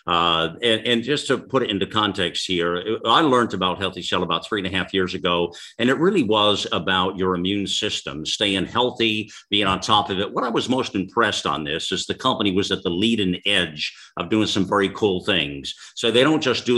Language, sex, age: English, male, 50-69